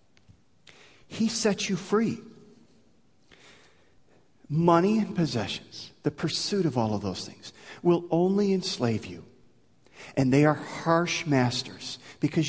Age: 40-59